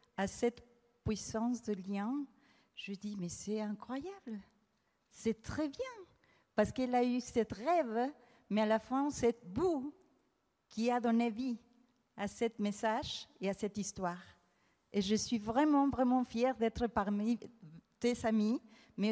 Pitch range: 210-260 Hz